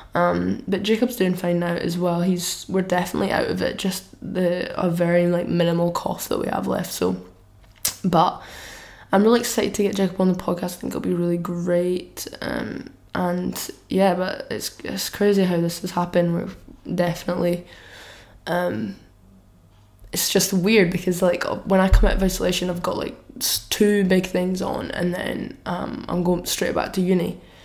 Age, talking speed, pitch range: 10-29, 180 wpm, 170-190 Hz